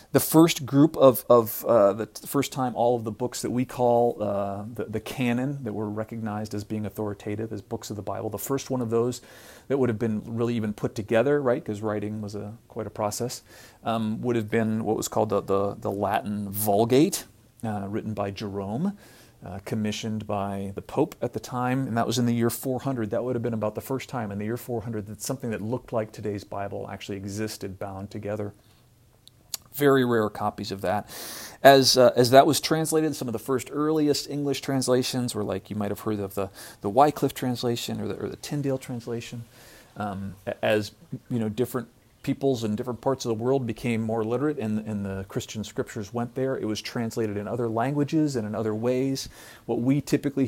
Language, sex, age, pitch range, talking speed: English, male, 40-59, 105-125 Hz, 210 wpm